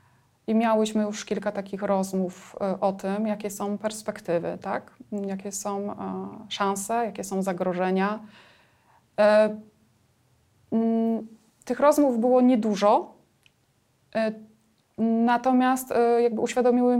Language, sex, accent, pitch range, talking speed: Polish, female, native, 205-245 Hz, 90 wpm